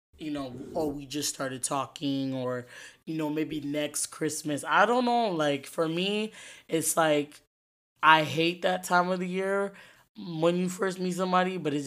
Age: 20-39